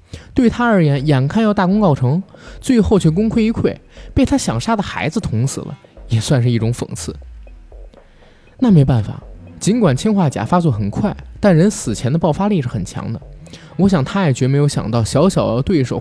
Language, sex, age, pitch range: Chinese, male, 20-39, 120-175 Hz